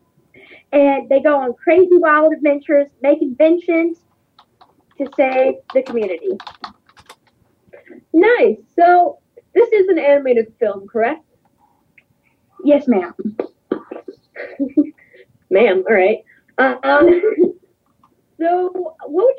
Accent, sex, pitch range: American, female, 250-340 Hz